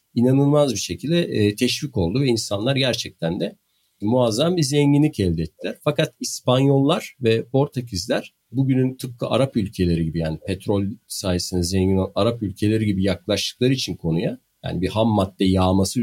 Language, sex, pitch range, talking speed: Turkish, male, 95-140 Hz, 145 wpm